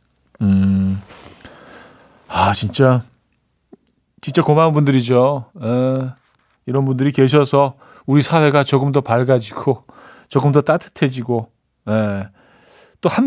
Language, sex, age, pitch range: Korean, male, 40-59, 115-150 Hz